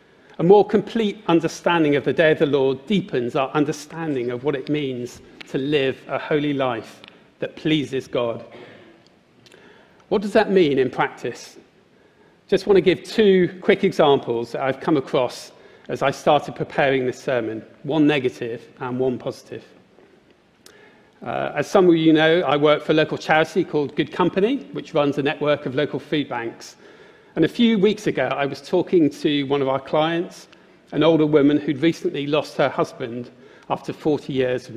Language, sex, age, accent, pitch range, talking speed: English, male, 40-59, British, 130-165 Hz, 175 wpm